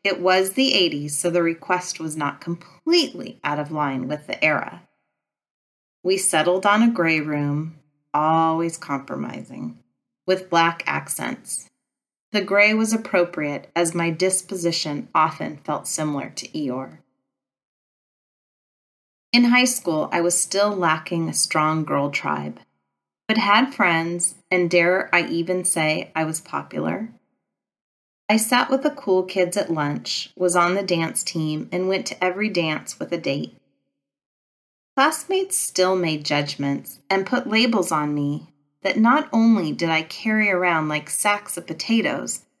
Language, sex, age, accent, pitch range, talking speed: English, female, 30-49, American, 150-190 Hz, 145 wpm